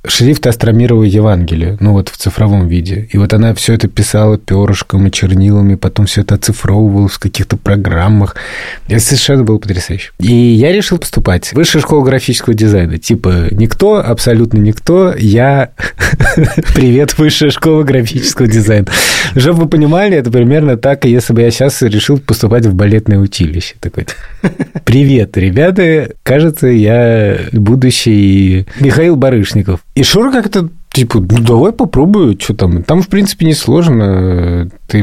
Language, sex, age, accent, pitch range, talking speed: Russian, male, 20-39, native, 100-135 Hz, 140 wpm